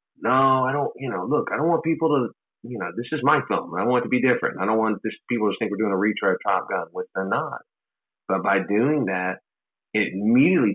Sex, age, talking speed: male, 30-49, 260 wpm